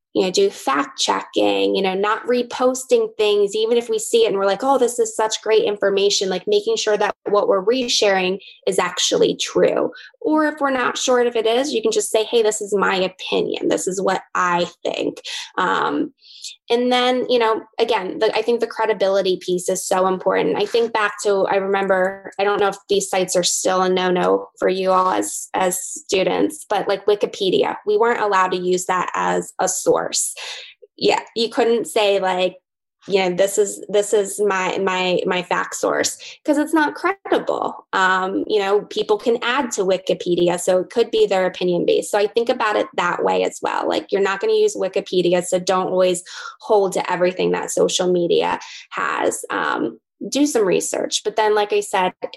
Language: English